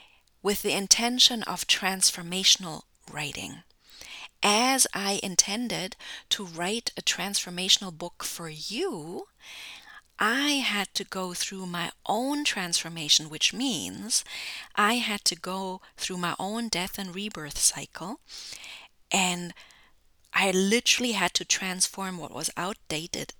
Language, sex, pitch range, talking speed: English, female, 170-220 Hz, 120 wpm